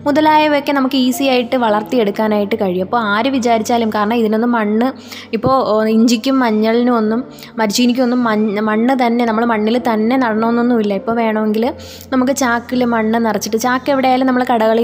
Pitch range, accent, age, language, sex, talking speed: 220-260 Hz, native, 20-39, Malayalam, female, 140 wpm